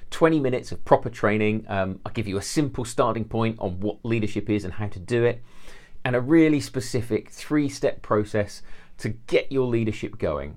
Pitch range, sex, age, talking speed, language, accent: 105-135 Hz, male, 40-59, 185 wpm, English, British